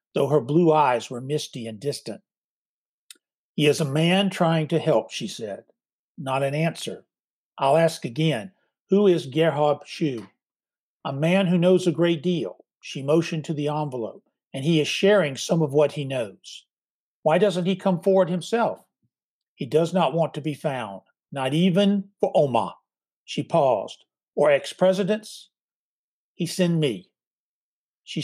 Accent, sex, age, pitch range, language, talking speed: American, male, 60-79, 145-180 Hz, English, 155 wpm